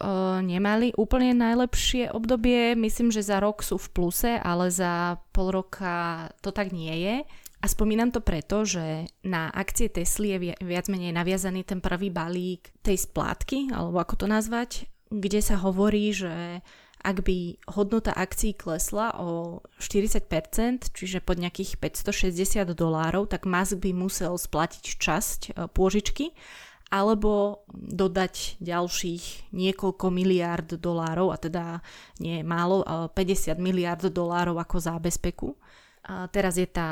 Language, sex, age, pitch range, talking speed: Slovak, female, 20-39, 175-200 Hz, 130 wpm